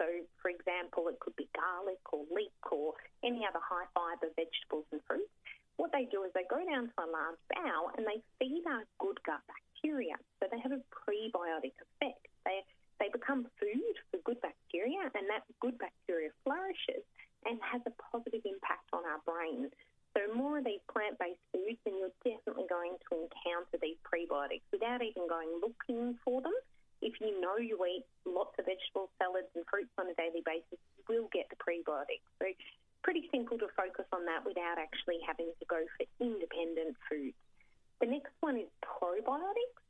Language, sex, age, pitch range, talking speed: English, female, 30-49, 175-275 Hz, 180 wpm